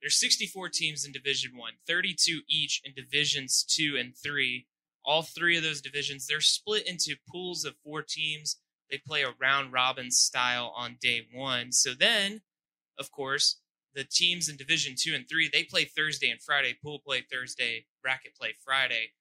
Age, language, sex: 20-39, English, male